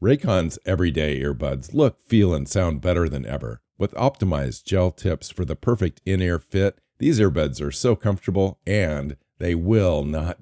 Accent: American